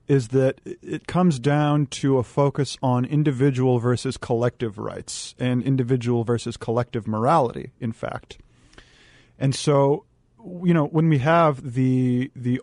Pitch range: 120-145 Hz